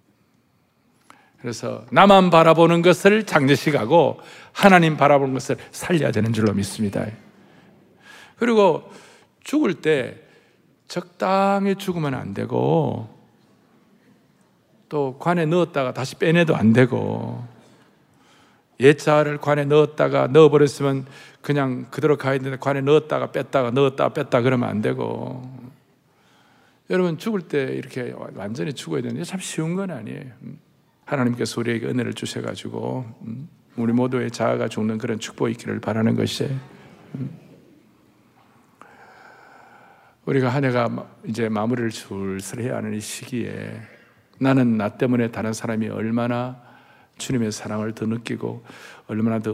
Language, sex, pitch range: Korean, male, 115-145 Hz